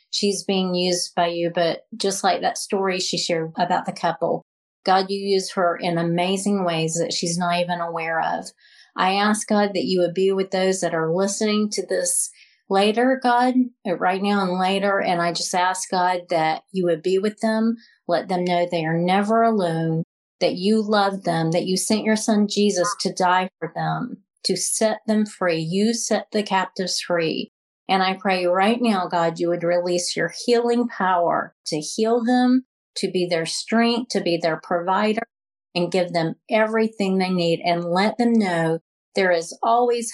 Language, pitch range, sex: English, 175-205 Hz, female